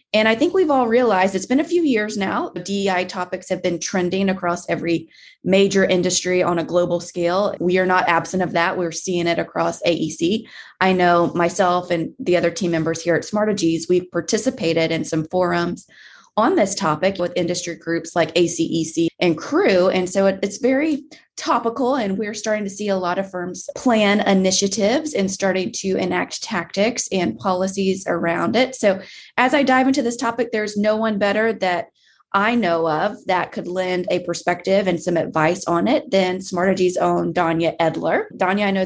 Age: 20-39